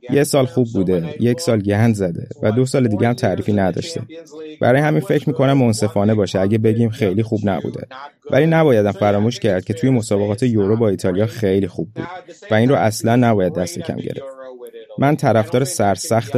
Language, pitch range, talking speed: Persian, 100-130 Hz, 185 wpm